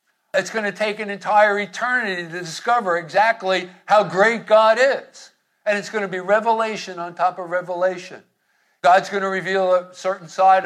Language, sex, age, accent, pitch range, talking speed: English, male, 50-69, American, 170-210 Hz, 175 wpm